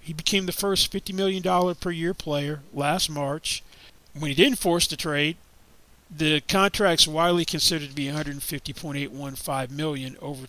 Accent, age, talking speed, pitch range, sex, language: American, 40-59, 150 wpm, 140-175 Hz, male, English